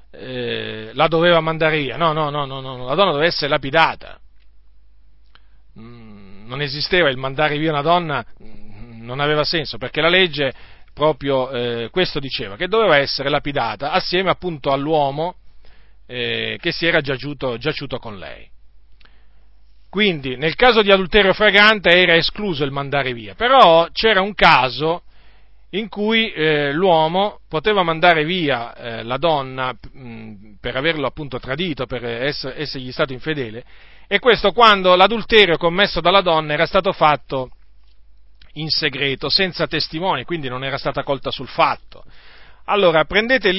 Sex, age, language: male, 40-59, Italian